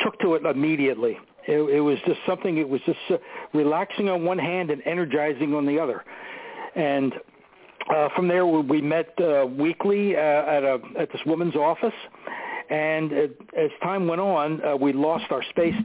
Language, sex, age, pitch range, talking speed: English, male, 60-79, 145-180 Hz, 185 wpm